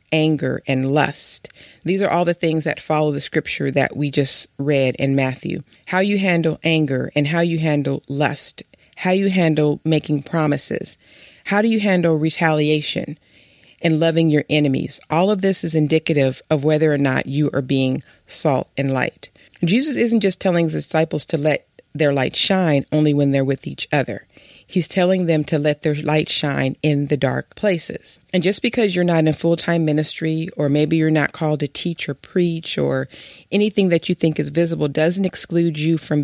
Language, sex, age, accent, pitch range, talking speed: English, female, 40-59, American, 145-170 Hz, 190 wpm